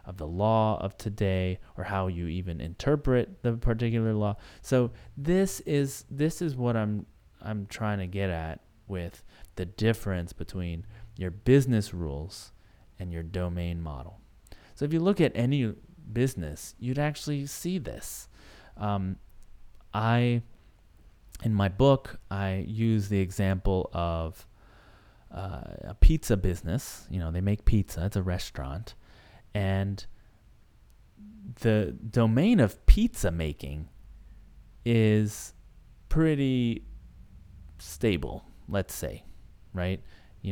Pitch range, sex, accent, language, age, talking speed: 90-115 Hz, male, American, English, 30-49, 120 wpm